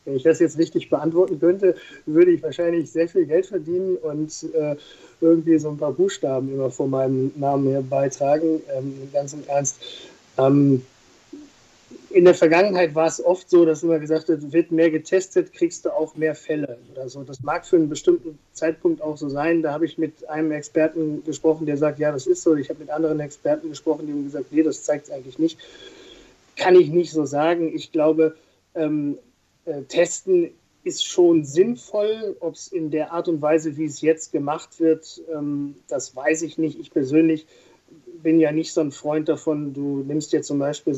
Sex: male